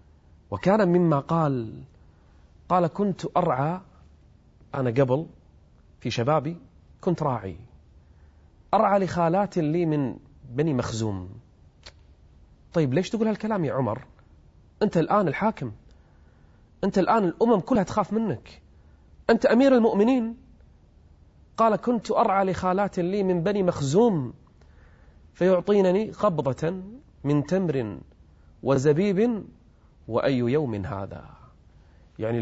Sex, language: male, Arabic